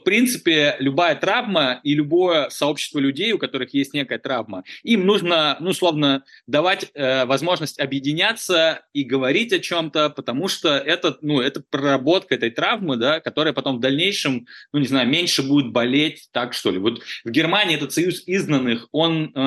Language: Russian